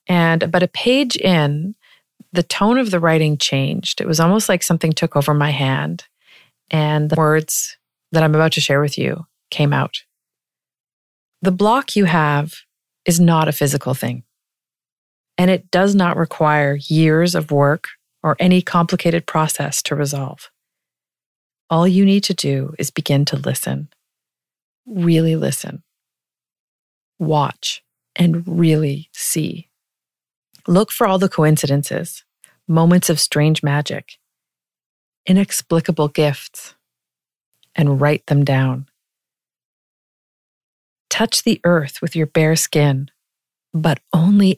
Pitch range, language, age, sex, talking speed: 145-180 Hz, English, 40-59, female, 125 wpm